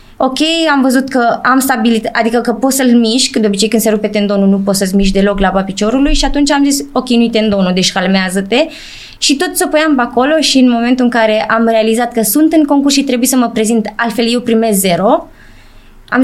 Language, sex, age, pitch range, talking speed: Romanian, female, 20-39, 215-260 Hz, 220 wpm